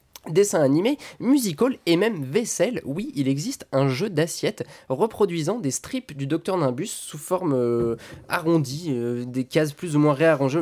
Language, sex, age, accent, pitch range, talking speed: French, male, 20-39, French, 130-180 Hz, 165 wpm